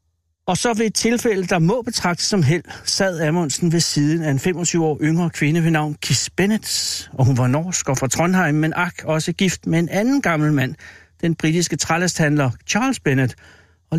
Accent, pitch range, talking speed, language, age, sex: native, 120-165 Hz, 195 wpm, Danish, 60-79, male